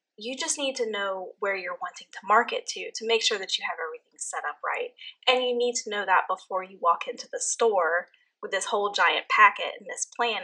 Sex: female